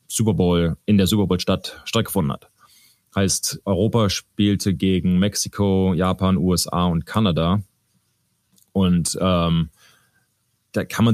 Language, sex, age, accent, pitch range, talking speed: German, male, 20-39, German, 90-100 Hz, 125 wpm